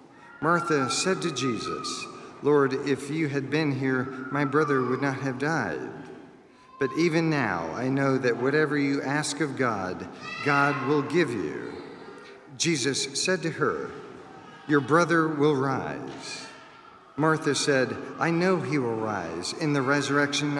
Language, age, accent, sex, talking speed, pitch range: English, 50-69, American, male, 145 wpm, 135-155 Hz